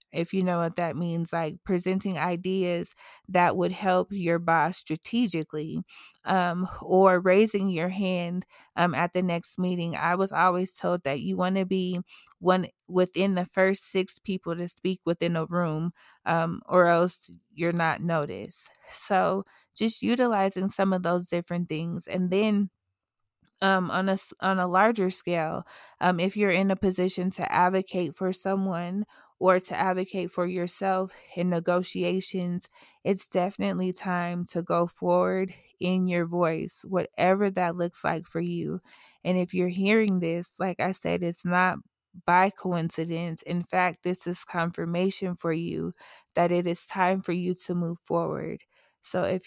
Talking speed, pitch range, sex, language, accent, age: 160 wpm, 170-190 Hz, female, English, American, 20-39